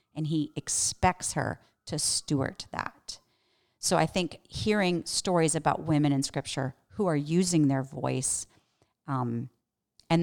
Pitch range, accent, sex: 155-200 Hz, American, female